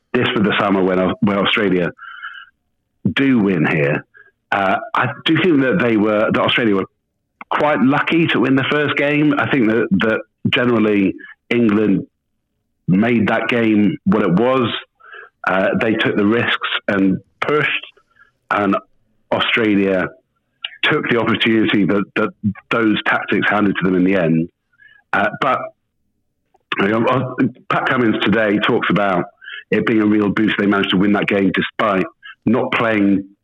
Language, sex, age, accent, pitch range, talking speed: English, male, 50-69, British, 95-115 Hz, 145 wpm